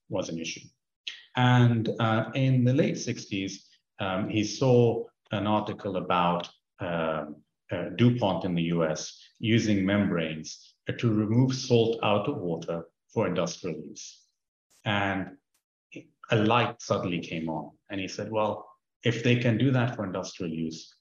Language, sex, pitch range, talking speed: English, male, 85-120 Hz, 145 wpm